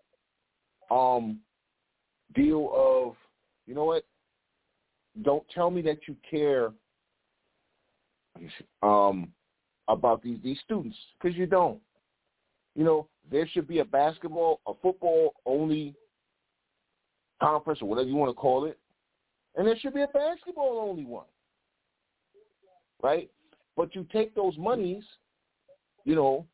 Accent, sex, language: American, male, English